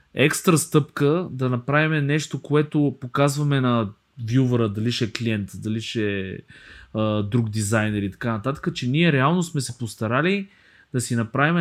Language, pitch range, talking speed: Bulgarian, 110-140 Hz, 150 wpm